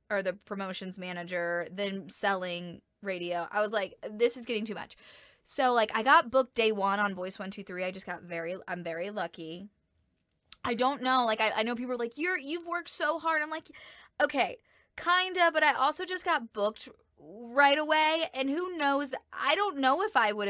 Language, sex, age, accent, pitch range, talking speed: English, female, 20-39, American, 195-250 Hz, 195 wpm